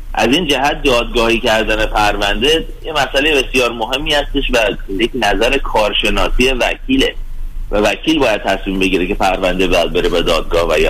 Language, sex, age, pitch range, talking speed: Persian, male, 30-49, 110-135 Hz, 160 wpm